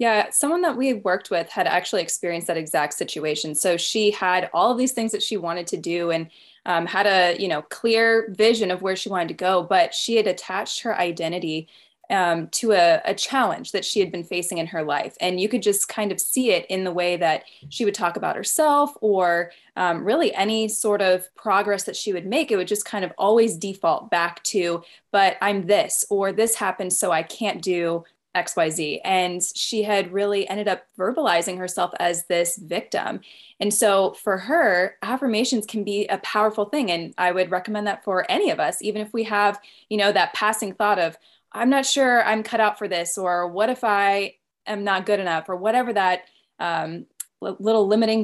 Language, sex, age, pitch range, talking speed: English, female, 20-39, 180-220 Hz, 210 wpm